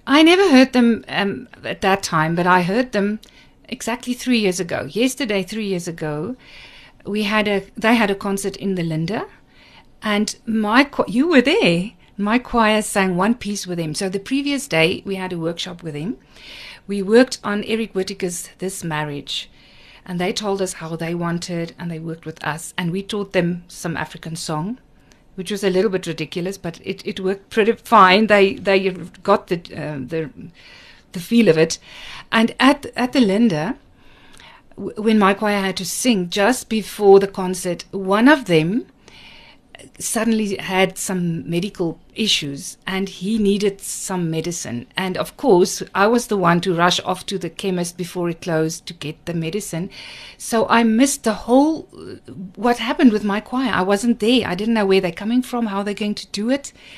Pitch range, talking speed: 180-225 Hz, 185 wpm